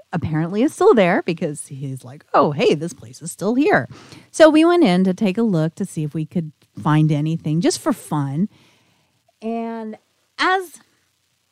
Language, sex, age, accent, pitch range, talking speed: English, female, 40-59, American, 155-205 Hz, 175 wpm